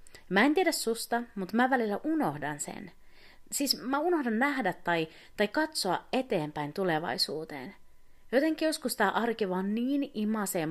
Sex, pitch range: female, 160-255 Hz